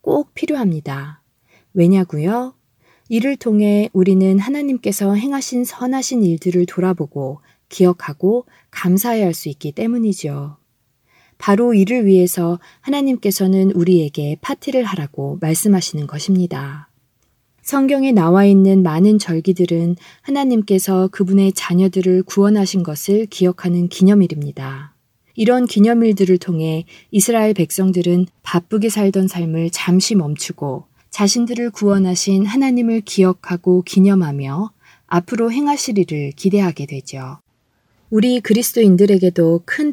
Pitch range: 160-215 Hz